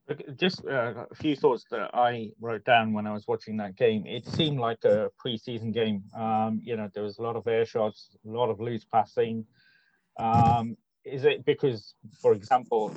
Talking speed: 190 wpm